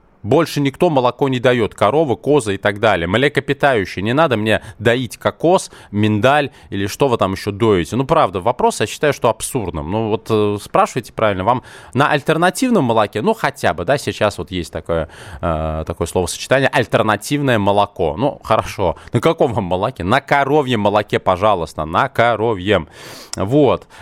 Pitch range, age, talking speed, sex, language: 95-140 Hz, 20-39, 160 wpm, male, Russian